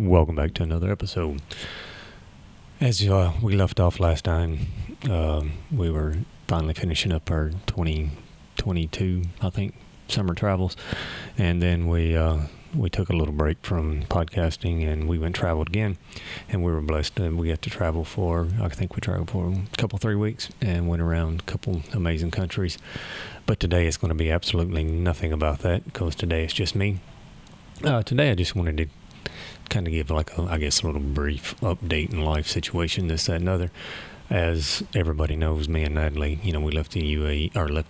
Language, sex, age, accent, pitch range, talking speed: English, male, 30-49, American, 75-90 Hz, 190 wpm